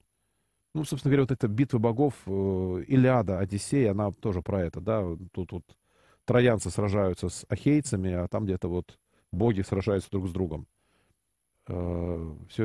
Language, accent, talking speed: Russian, native, 140 wpm